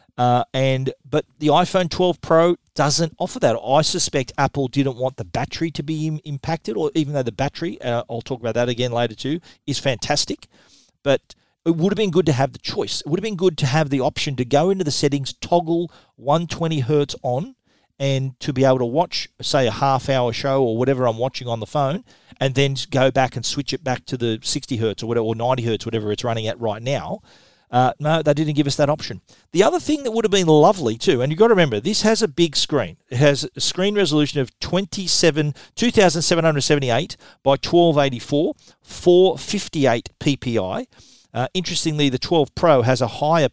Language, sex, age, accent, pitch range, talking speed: English, male, 40-59, Australian, 125-165 Hz, 210 wpm